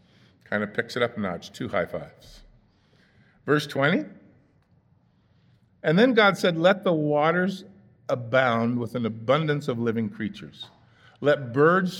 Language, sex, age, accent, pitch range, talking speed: English, male, 50-69, American, 120-155 Hz, 140 wpm